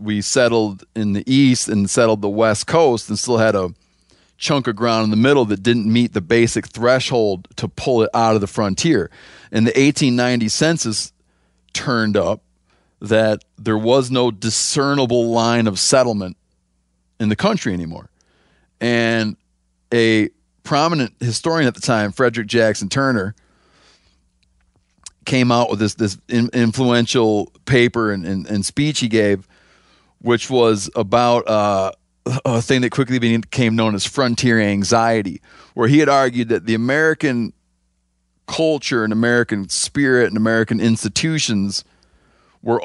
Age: 40-59